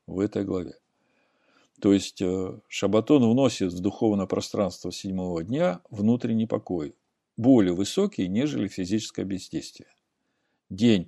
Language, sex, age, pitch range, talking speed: Russian, male, 50-69, 100-135 Hz, 110 wpm